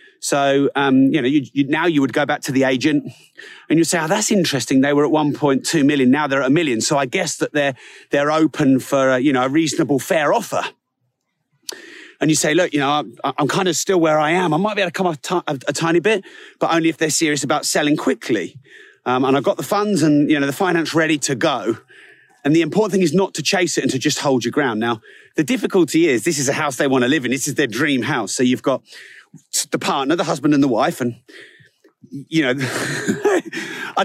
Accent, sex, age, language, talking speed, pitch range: British, male, 30-49, English, 240 wpm, 135-180 Hz